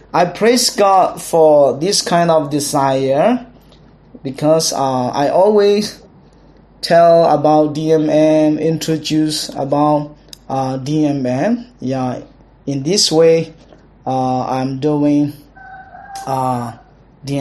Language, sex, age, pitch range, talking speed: English, male, 20-39, 140-180 Hz, 110 wpm